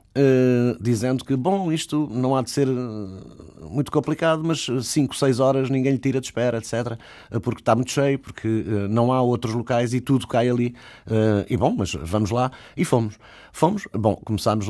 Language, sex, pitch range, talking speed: Portuguese, male, 100-130 Hz, 175 wpm